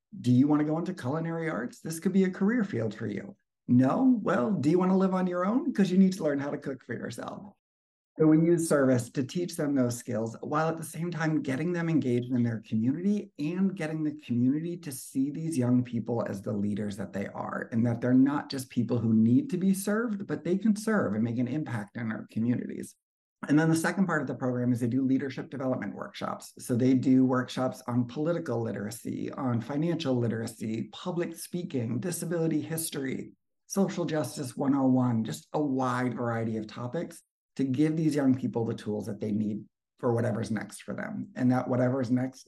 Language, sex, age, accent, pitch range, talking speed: English, male, 50-69, American, 120-160 Hz, 210 wpm